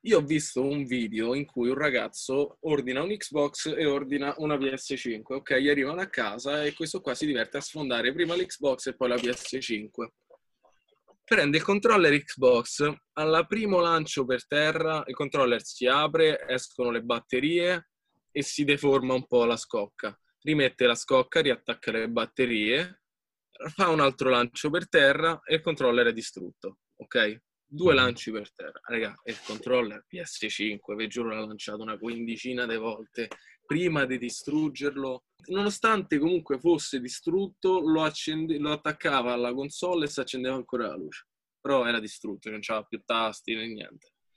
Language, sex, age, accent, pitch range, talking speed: Italian, male, 20-39, native, 120-155 Hz, 160 wpm